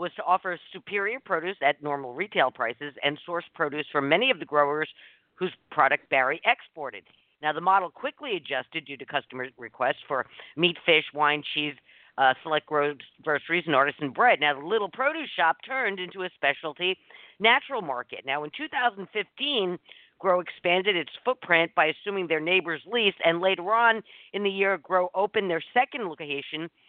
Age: 50-69